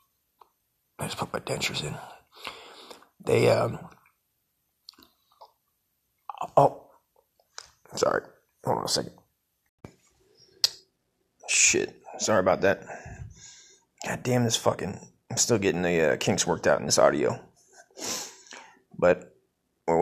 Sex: male